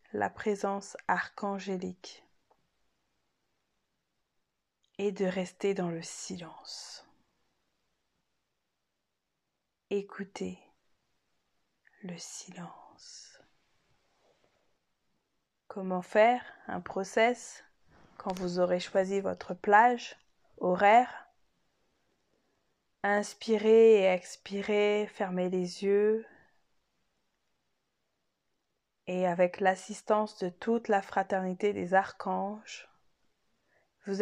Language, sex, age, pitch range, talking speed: French, female, 20-39, 180-210 Hz, 70 wpm